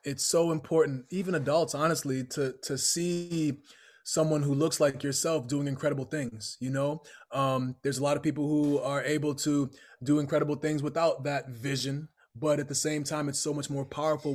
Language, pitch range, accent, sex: English, 135-150 Hz, American, male